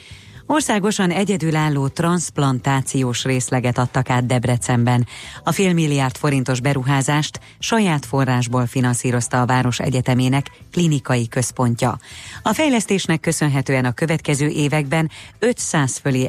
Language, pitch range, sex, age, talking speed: Hungarian, 125-165 Hz, female, 30-49, 100 wpm